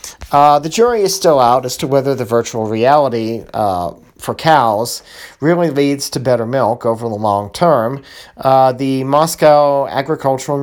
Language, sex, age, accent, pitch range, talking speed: English, male, 40-59, American, 125-155 Hz, 160 wpm